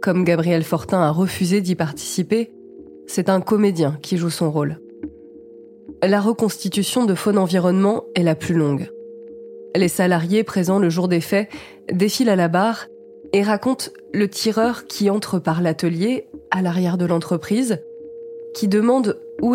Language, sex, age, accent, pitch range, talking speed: French, female, 20-39, French, 170-225 Hz, 150 wpm